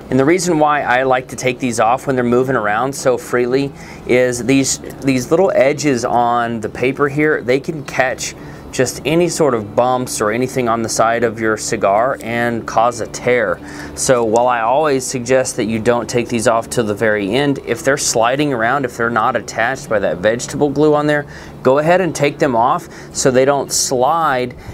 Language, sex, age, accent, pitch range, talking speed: English, male, 30-49, American, 120-145 Hz, 205 wpm